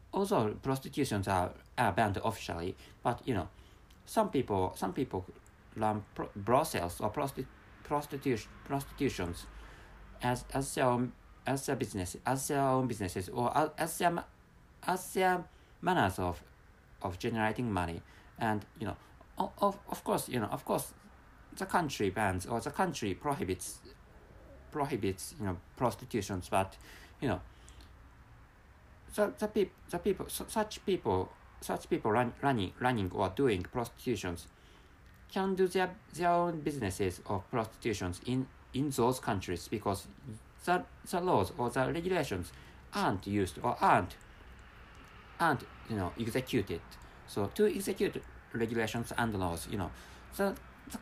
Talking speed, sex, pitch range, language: 140 wpm, male, 95-140 Hz, English